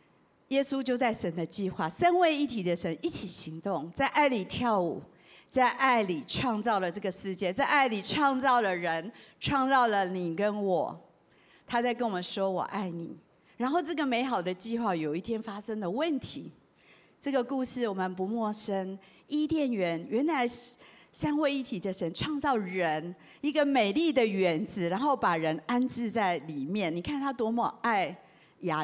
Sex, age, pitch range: female, 50-69, 185-255 Hz